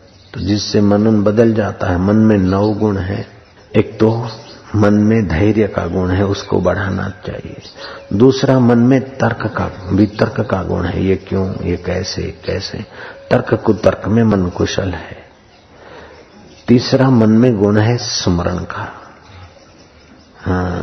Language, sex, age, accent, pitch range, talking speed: Hindi, male, 50-69, native, 90-105 Hz, 150 wpm